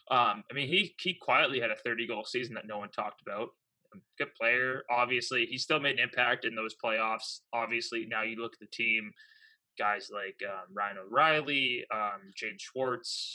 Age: 20-39